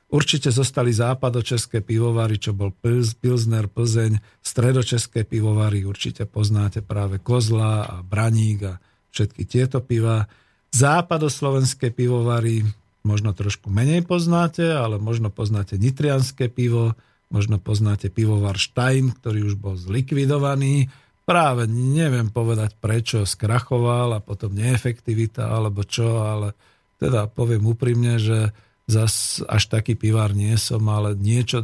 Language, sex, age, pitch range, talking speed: Slovak, male, 50-69, 105-125 Hz, 120 wpm